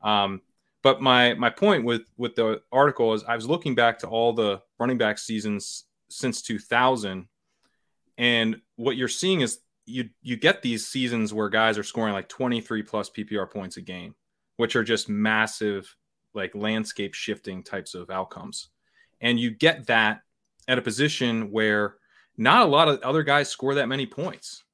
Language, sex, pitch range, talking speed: English, male, 105-125 Hz, 170 wpm